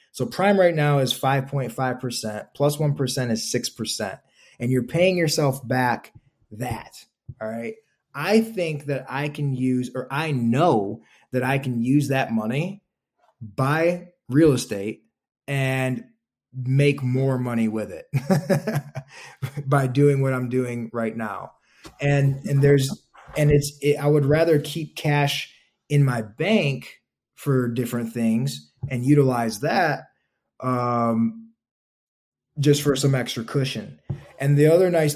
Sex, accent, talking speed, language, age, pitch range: male, American, 135 wpm, English, 20-39, 115-140 Hz